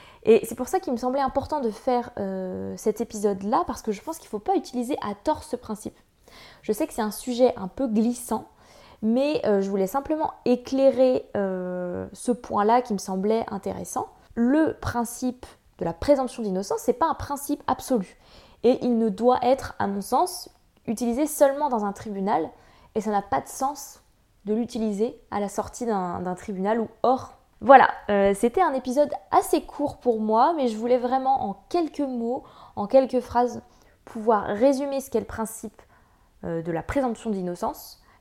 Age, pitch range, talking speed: 20-39, 205-265 Hz, 185 wpm